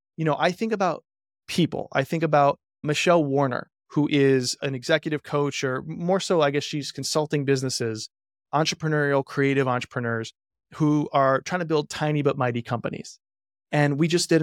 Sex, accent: male, American